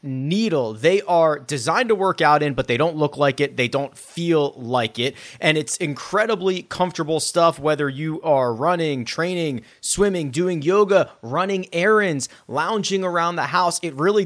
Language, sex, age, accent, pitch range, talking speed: English, male, 30-49, American, 145-185 Hz, 170 wpm